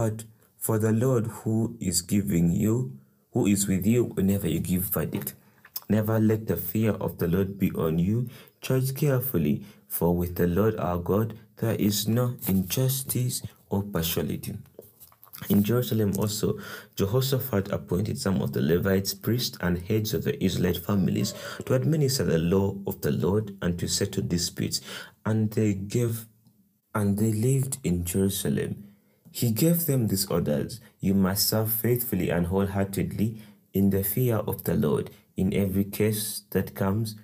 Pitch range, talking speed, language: 95-110 Hz, 155 wpm, English